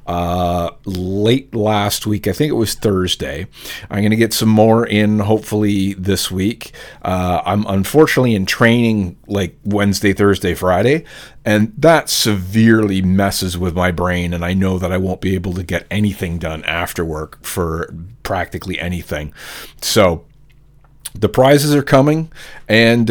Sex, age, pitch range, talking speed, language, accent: male, 40-59, 95-130 Hz, 150 wpm, English, American